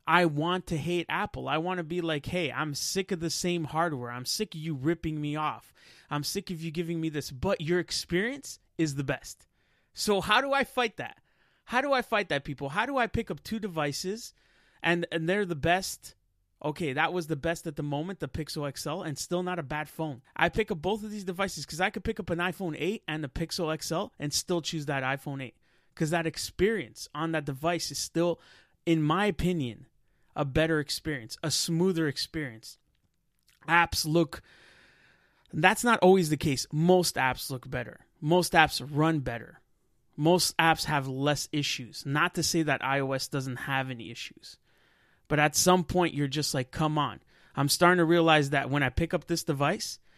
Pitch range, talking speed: 145-180 Hz, 200 wpm